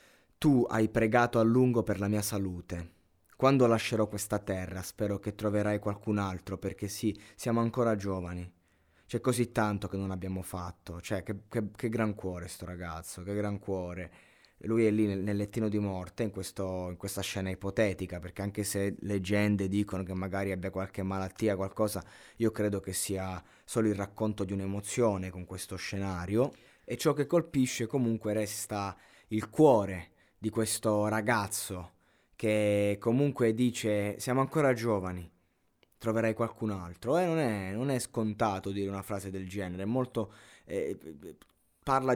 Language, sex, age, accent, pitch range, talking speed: Italian, male, 20-39, native, 95-115 Hz, 160 wpm